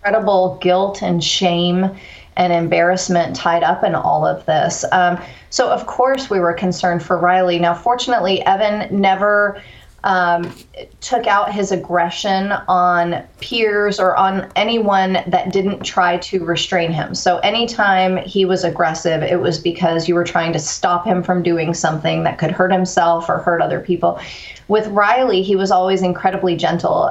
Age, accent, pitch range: 30-49, American, 170-195 Hz